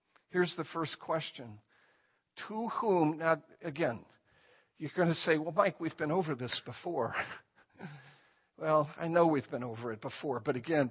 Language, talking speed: English, 160 wpm